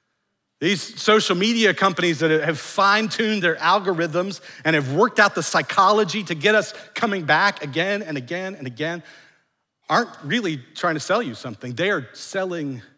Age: 40-59